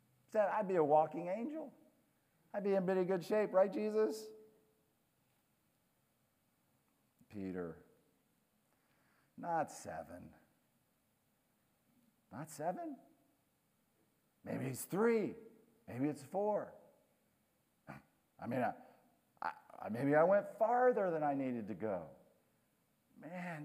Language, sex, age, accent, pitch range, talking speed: English, male, 50-69, American, 145-195 Hz, 90 wpm